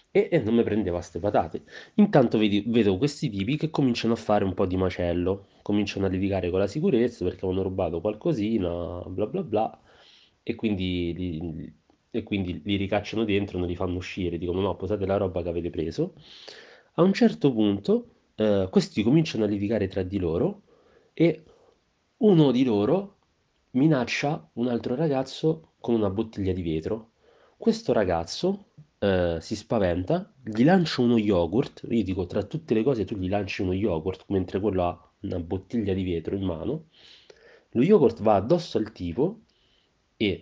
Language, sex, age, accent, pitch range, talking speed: Italian, male, 30-49, native, 95-130 Hz, 170 wpm